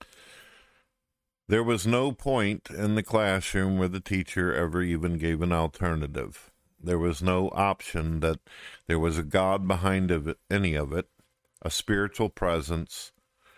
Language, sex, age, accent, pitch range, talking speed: English, male, 50-69, American, 80-95 Hz, 135 wpm